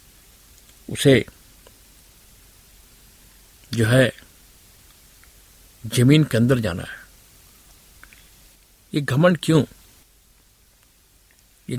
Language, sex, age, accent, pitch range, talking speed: Hindi, male, 60-79, native, 100-130 Hz, 60 wpm